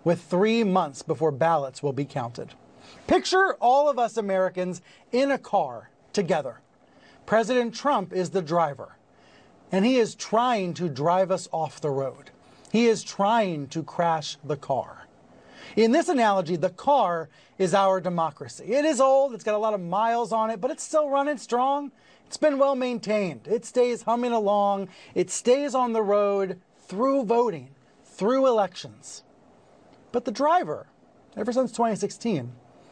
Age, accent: 30-49, American